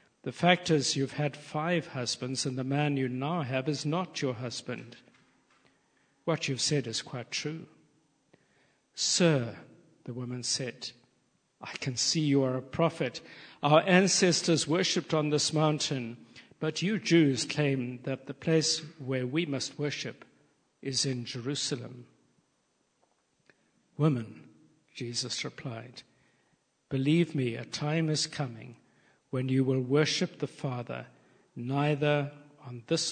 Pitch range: 130-155 Hz